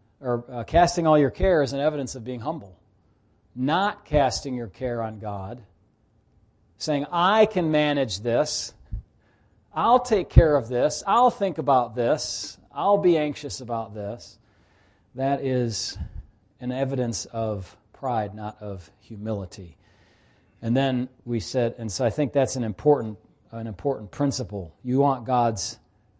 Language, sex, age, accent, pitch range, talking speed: English, male, 40-59, American, 105-130 Hz, 140 wpm